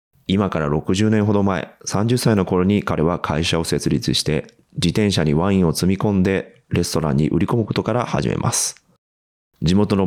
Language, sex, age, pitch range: Japanese, male, 30-49, 80-105 Hz